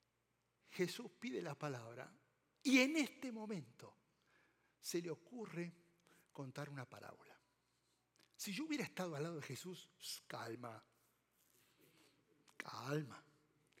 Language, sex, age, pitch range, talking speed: Spanish, male, 60-79, 150-235 Hz, 105 wpm